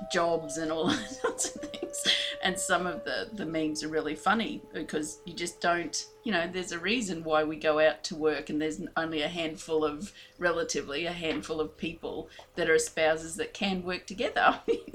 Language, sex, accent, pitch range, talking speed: English, female, Australian, 160-205 Hz, 195 wpm